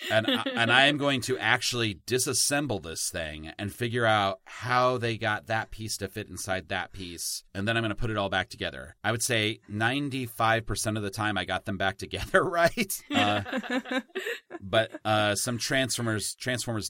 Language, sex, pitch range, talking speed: English, male, 95-120 Hz, 185 wpm